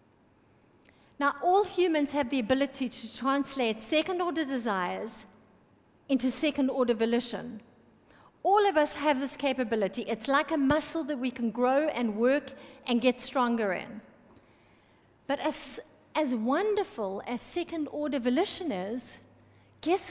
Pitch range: 250-315 Hz